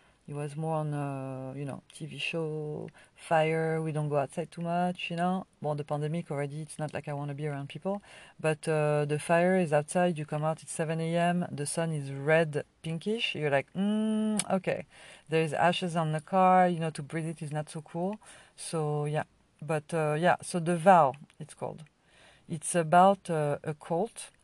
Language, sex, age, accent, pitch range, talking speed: English, female, 40-59, French, 150-180 Hz, 200 wpm